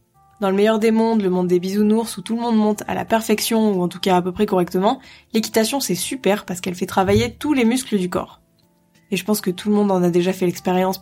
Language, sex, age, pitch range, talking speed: French, female, 20-39, 180-215 Hz, 265 wpm